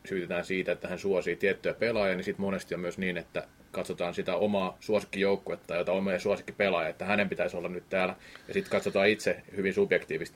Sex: male